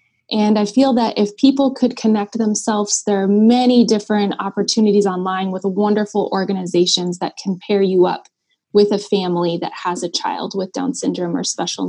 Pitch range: 190-240 Hz